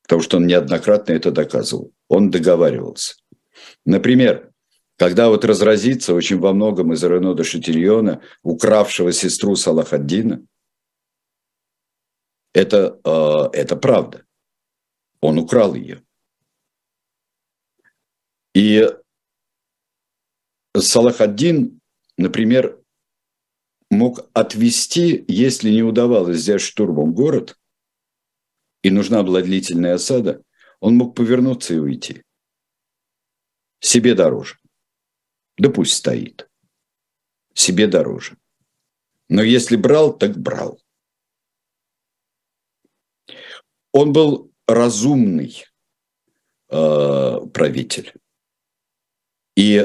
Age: 60-79